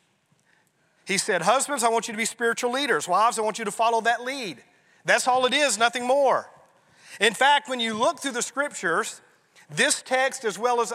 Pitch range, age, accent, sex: 205-255 Hz, 40-59, American, male